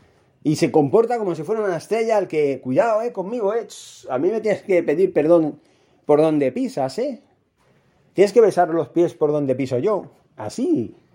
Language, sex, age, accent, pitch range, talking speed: Spanish, male, 30-49, Spanish, 120-155 Hz, 190 wpm